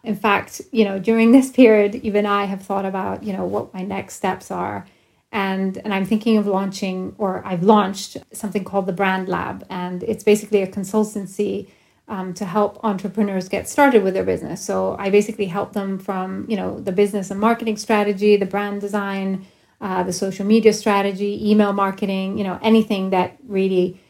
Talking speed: 185 wpm